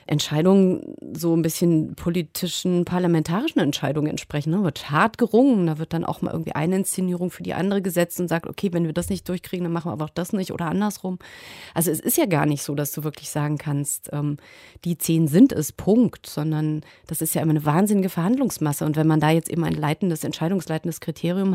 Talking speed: 215 wpm